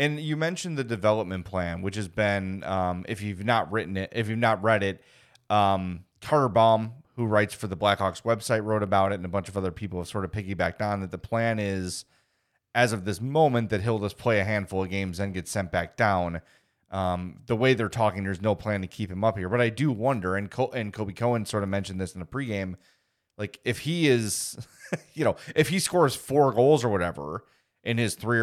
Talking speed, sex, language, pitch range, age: 230 wpm, male, English, 95-120 Hz, 30-49